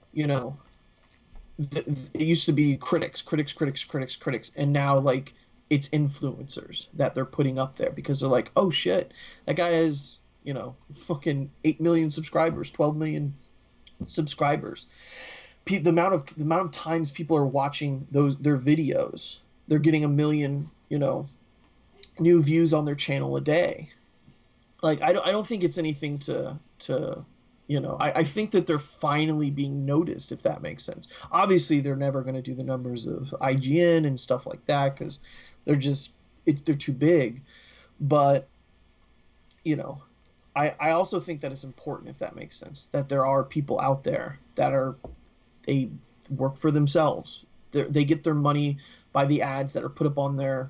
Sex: male